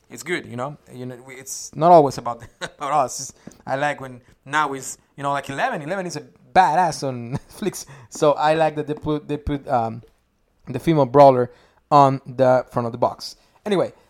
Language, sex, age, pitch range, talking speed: English, male, 20-39, 140-190 Hz, 195 wpm